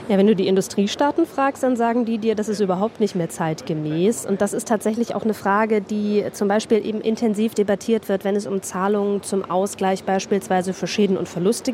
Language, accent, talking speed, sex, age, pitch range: German, German, 210 wpm, female, 20-39, 185-220 Hz